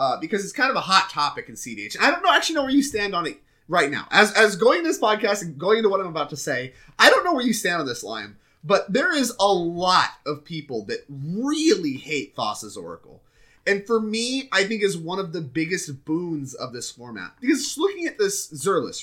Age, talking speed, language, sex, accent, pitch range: 30-49, 245 wpm, English, male, American, 145-220 Hz